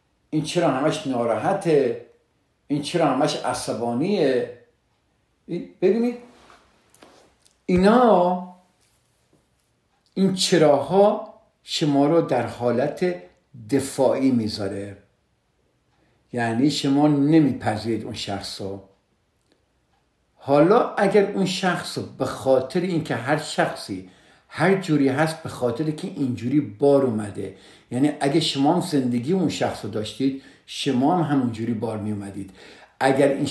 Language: Persian